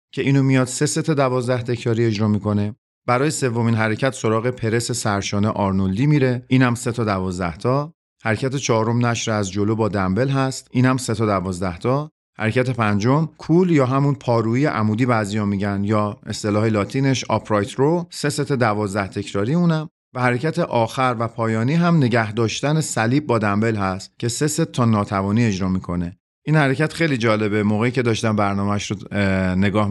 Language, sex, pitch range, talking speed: Persian, male, 100-130 Hz, 165 wpm